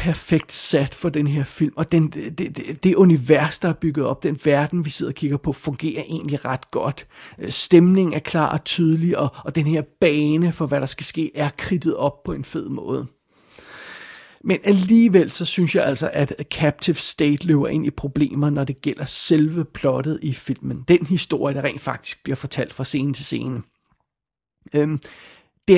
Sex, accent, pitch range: male, native, 145-175 Hz